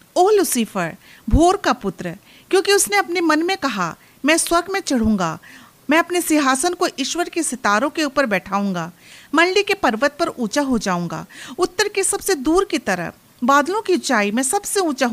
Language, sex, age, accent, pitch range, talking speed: Hindi, female, 40-59, native, 220-350 Hz, 175 wpm